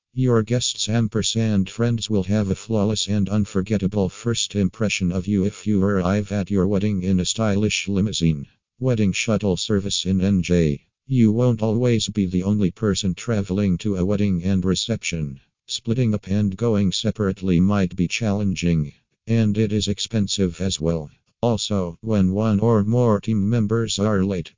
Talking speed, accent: 160 wpm, American